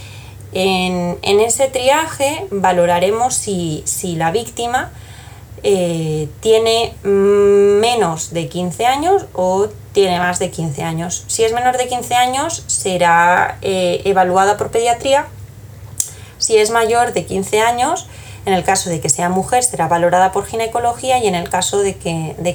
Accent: Spanish